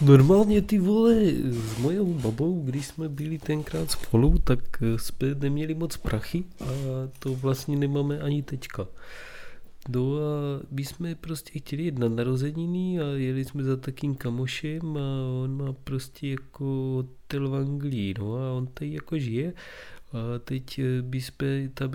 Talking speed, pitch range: 150 wpm, 125-155 Hz